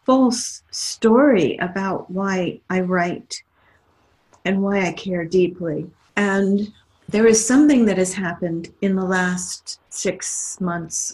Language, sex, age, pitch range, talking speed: English, female, 50-69, 185-215 Hz, 125 wpm